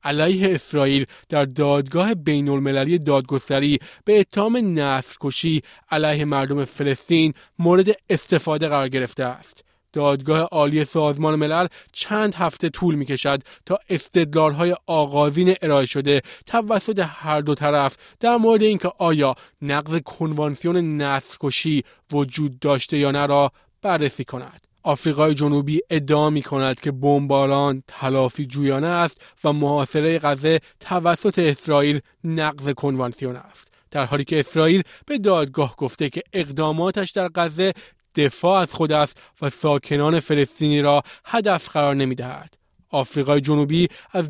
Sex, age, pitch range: male, 30-49, 140-175 Hz